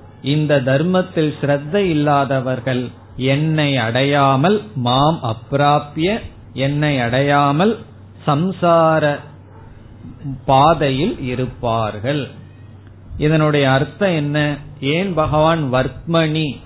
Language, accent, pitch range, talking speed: Tamil, native, 120-155 Hz, 60 wpm